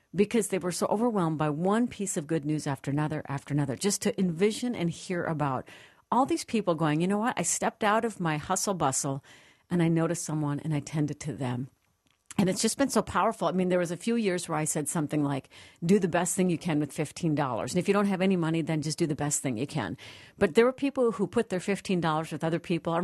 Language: English